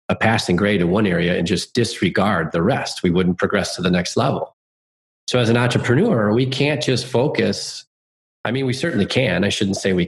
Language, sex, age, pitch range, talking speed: English, male, 30-49, 85-115 Hz, 210 wpm